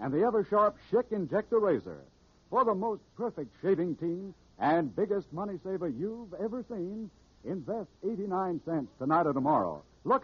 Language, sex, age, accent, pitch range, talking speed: English, male, 70-89, American, 170-220 Hz, 150 wpm